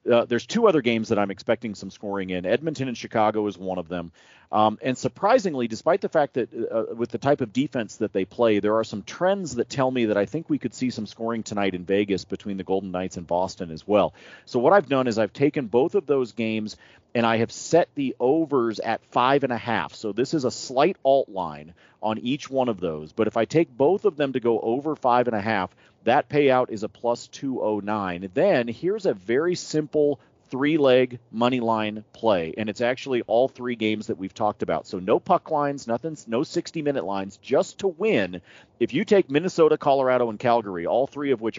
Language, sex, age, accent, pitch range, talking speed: English, male, 40-59, American, 105-150 Hz, 225 wpm